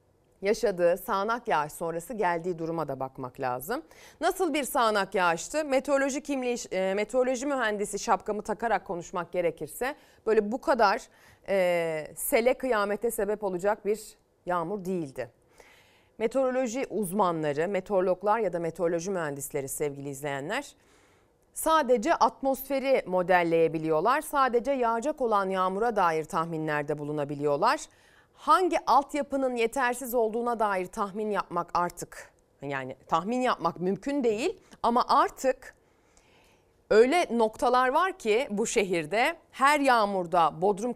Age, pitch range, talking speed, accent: 30-49, 170-255 Hz, 110 wpm, native